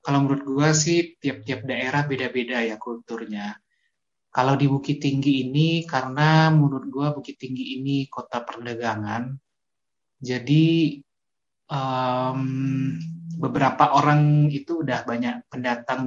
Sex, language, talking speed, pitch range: male, Indonesian, 110 wpm, 120-145 Hz